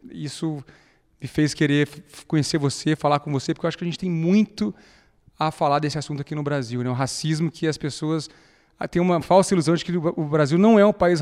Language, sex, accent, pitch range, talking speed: Portuguese, male, Brazilian, 140-170 Hz, 225 wpm